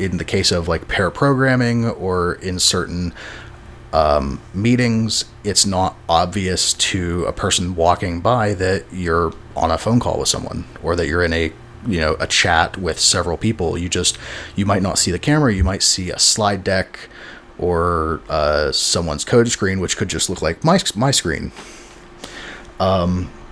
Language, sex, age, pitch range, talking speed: English, male, 30-49, 90-115 Hz, 175 wpm